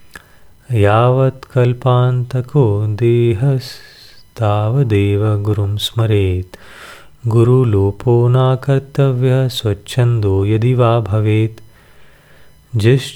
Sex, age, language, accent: male, 30-49, Hindi, native